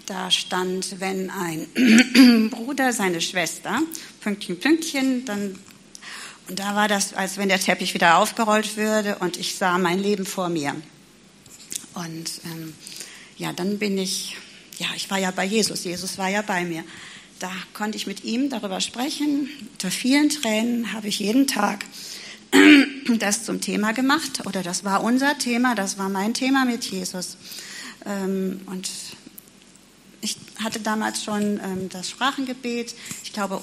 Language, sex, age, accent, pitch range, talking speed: German, female, 40-59, German, 185-230 Hz, 150 wpm